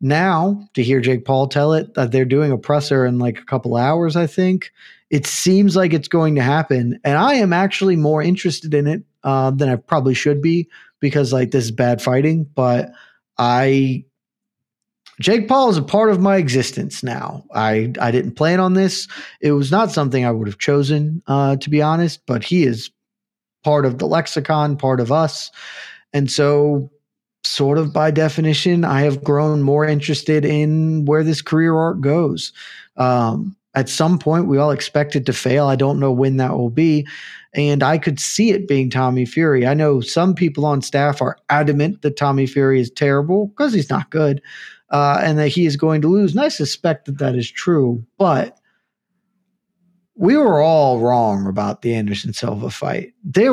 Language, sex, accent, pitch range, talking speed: English, male, American, 135-165 Hz, 190 wpm